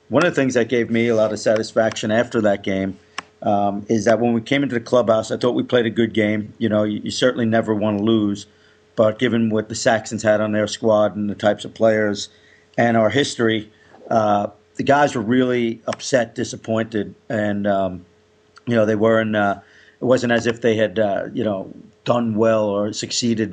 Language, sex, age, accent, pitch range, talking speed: English, male, 50-69, American, 105-115 Hz, 210 wpm